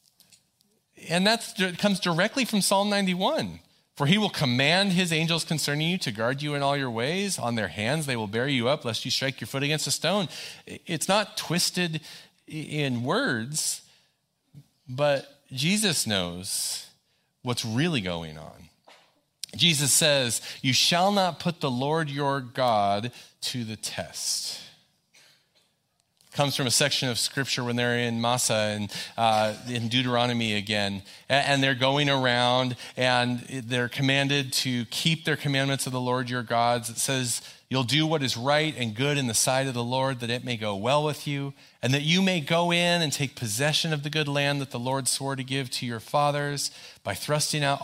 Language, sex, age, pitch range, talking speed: English, male, 40-59, 120-150 Hz, 175 wpm